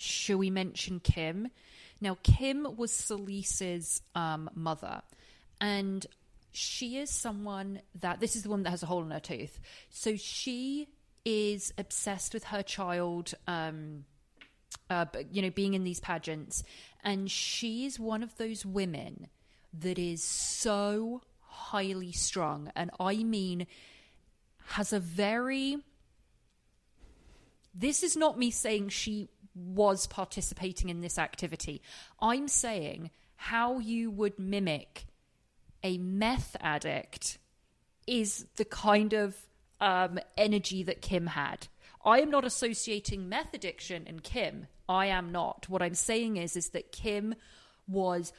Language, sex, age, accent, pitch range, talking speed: English, female, 30-49, British, 180-220 Hz, 130 wpm